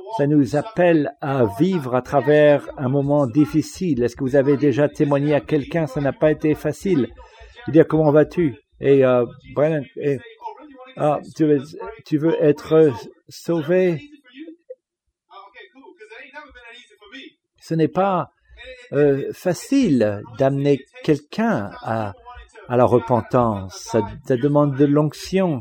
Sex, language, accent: male, English, French